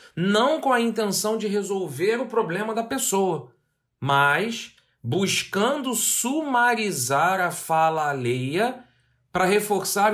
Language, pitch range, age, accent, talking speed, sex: Portuguese, 140-205 Hz, 40-59, Brazilian, 105 wpm, male